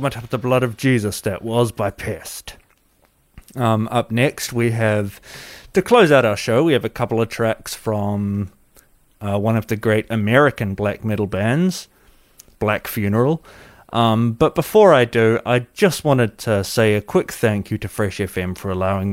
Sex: male